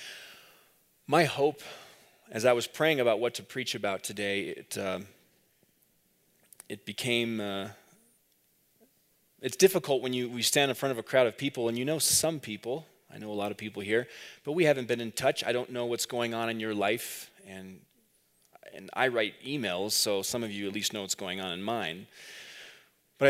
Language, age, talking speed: English, 30-49, 195 wpm